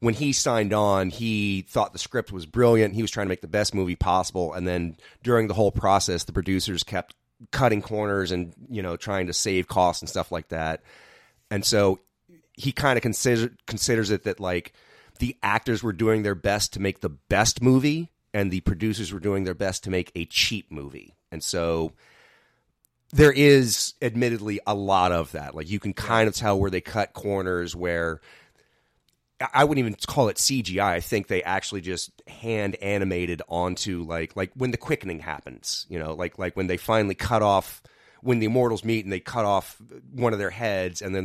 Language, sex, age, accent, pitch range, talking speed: English, male, 30-49, American, 90-110 Hz, 200 wpm